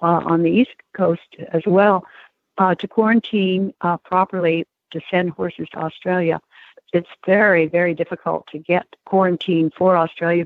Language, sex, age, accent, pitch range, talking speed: English, female, 60-79, American, 170-195 Hz, 150 wpm